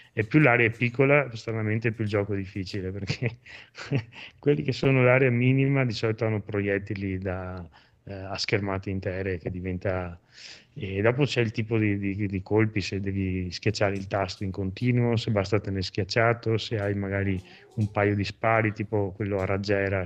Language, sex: Italian, male